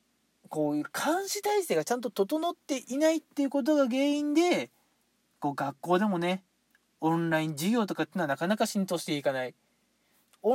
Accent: native